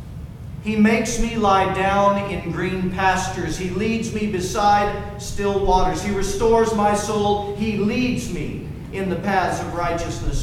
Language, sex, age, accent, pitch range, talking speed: English, male, 40-59, American, 175-215 Hz, 150 wpm